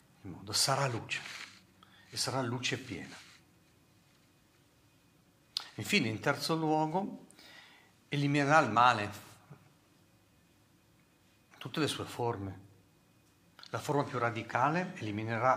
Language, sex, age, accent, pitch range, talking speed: Italian, male, 50-69, native, 105-145 Hz, 90 wpm